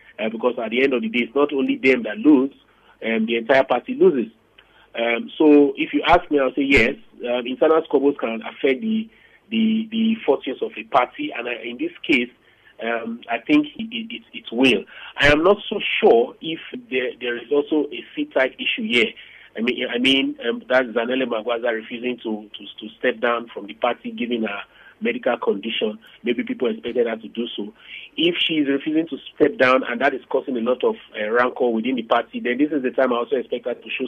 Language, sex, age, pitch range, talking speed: English, male, 40-59, 120-175 Hz, 220 wpm